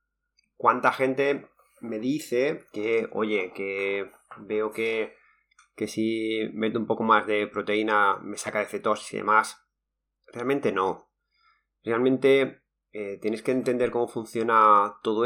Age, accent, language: 30-49, Spanish, Spanish